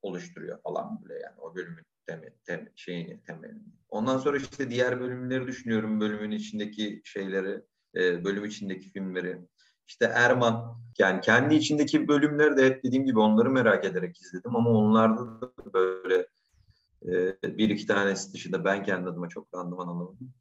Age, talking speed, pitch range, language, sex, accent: 40-59, 140 wpm, 95-120 Hz, Turkish, male, native